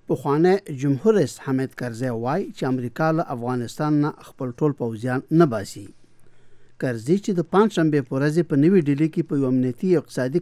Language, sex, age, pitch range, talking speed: English, male, 60-79, 120-150 Hz, 165 wpm